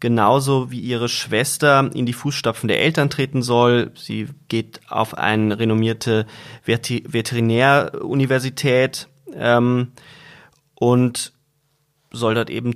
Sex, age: male, 30-49